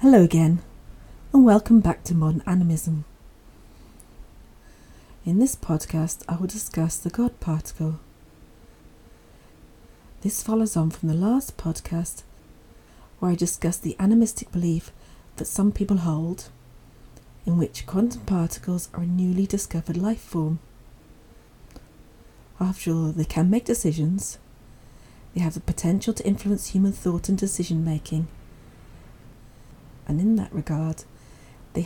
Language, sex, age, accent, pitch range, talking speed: English, female, 40-59, British, 125-185 Hz, 125 wpm